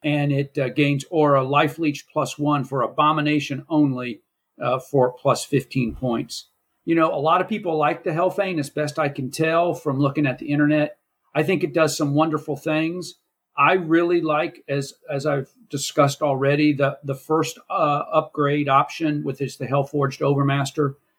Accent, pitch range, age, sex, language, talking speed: American, 140-155 Hz, 50-69, male, English, 175 wpm